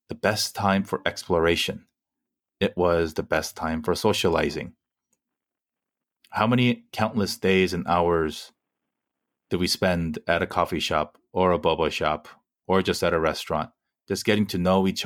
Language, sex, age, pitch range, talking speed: English, male, 30-49, 85-105 Hz, 155 wpm